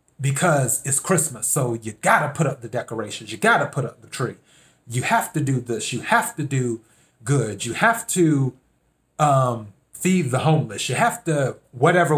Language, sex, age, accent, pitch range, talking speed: English, male, 30-49, American, 125-155 Hz, 190 wpm